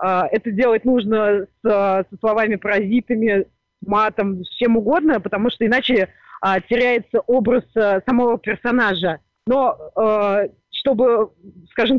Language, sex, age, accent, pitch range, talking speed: Russian, female, 20-39, native, 205-245 Hz, 95 wpm